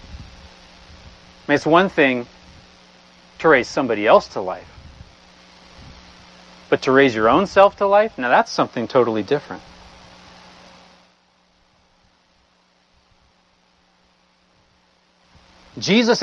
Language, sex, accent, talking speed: English, male, American, 85 wpm